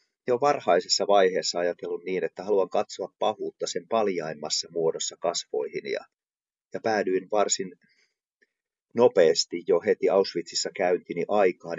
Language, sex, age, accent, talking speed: Finnish, male, 30-49, native, 115 wpm